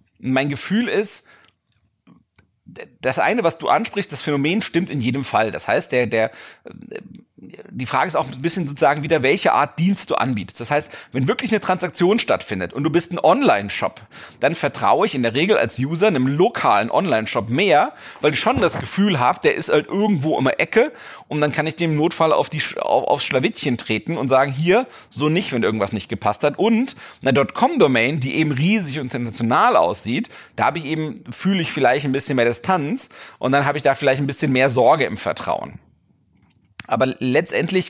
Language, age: German, 40-59